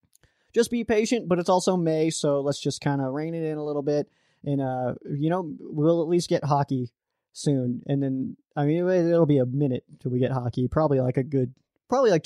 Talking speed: 225 wpm